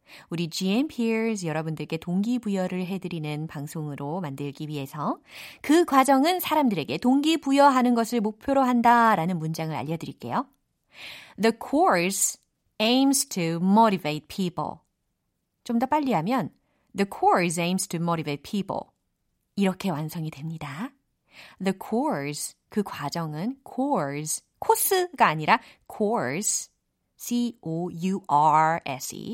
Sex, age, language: female, 30-49, Korean